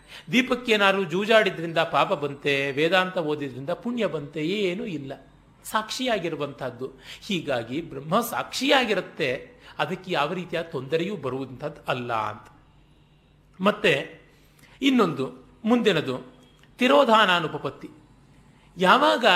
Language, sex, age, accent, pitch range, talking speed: Kannada, male, 40-59, native, 145-220 Hz, 80 wpm